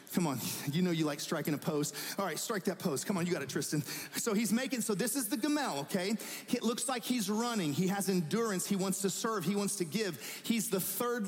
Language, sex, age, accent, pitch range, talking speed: English, male, 40-59, American, 170-215 Hz, 255 wpm